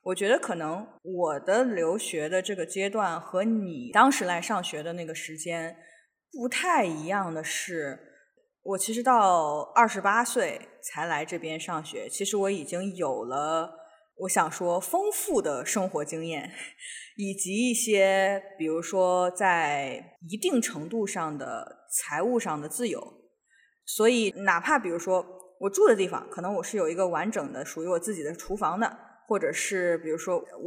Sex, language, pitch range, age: female, English, 170-240 Hz, 20-39